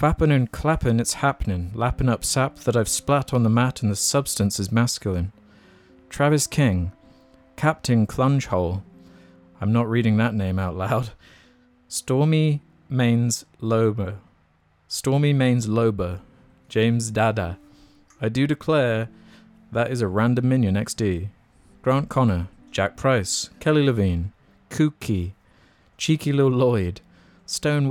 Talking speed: 125 wpm